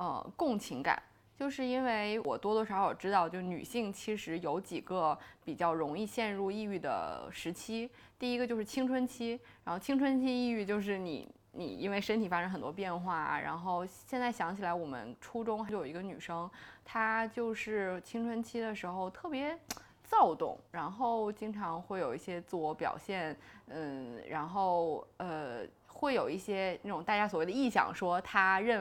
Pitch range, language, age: 175-230 Hz, Chinese, 20-39